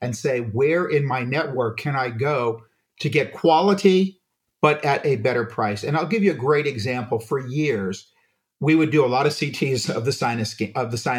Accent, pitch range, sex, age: American, 130-175 Hz, male, 50-69